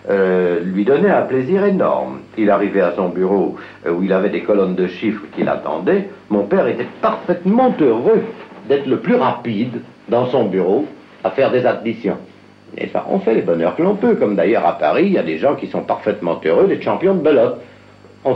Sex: male